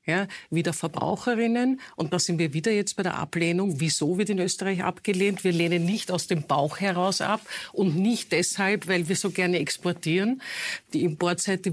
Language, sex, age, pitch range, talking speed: German, female, 50-69, 170-200 Hz, 180 wpm